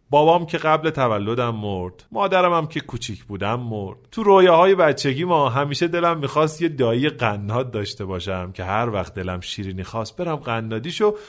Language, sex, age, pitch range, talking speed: Persian, male, 30-49, 120-185 Hz, 160 wpm